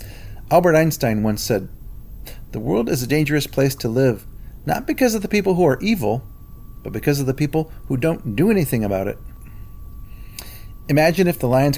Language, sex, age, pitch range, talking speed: English, male, 40-59, 115-150 Hz, 180 wpm